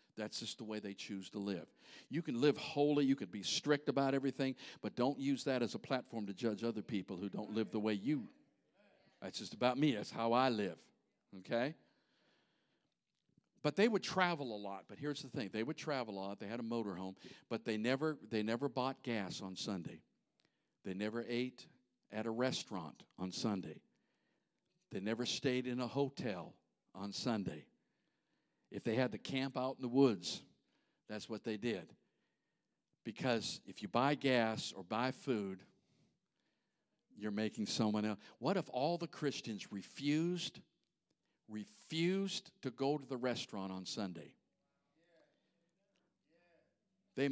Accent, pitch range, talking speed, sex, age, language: American, 110-150 Hz, 160 wpm, male, 50-69, English